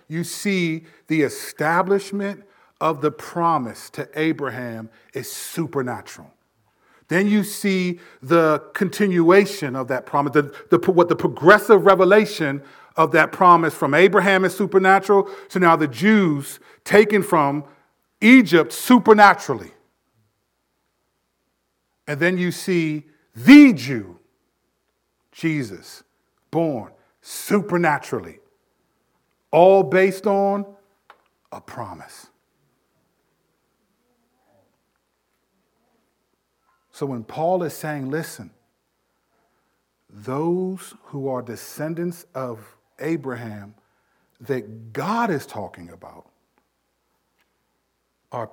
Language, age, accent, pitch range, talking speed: English, 40-59, American, 130-190 Hz, 90 wpm